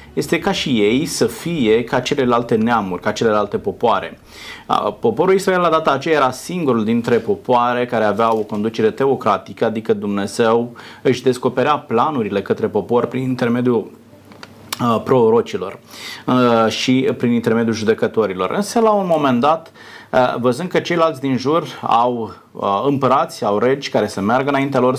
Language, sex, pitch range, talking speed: Romanian, male, 115-150 Hz, 140 wpm